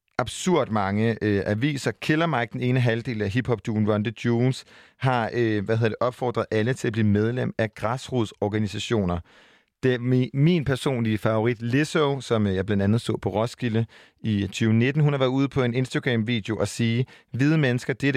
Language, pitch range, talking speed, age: Danish, 110-130 Hz, 175 wpm, 40-59